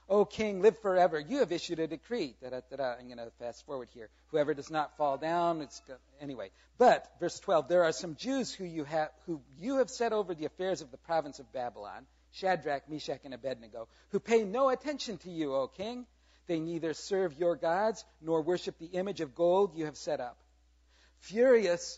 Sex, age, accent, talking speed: male, 50-69, American, 205 wpm